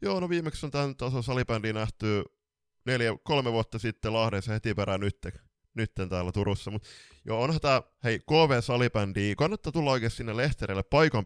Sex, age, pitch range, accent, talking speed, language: male, 20-39, 90-115 Hz, native, 155 wpm, Finnish